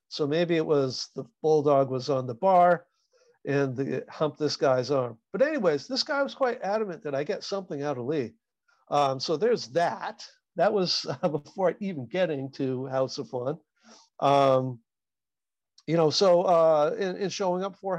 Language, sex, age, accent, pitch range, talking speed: English, male, 50-69, American, 140-175 Hz, 175 wpm